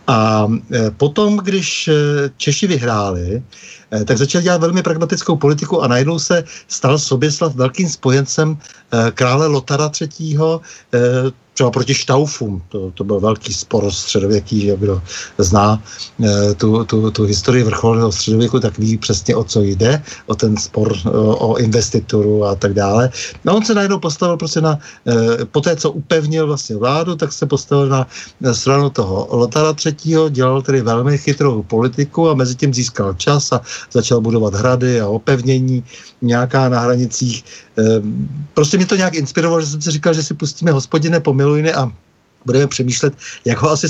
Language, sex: Czech, male